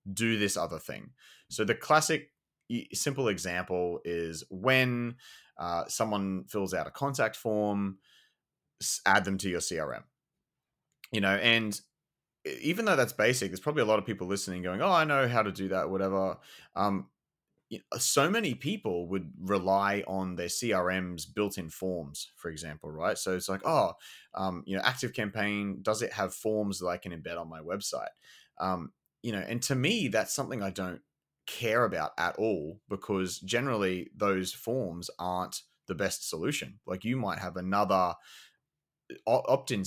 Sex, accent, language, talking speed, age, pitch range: male, Australian, English, 165 wpm, 30-49, 90-110 Hz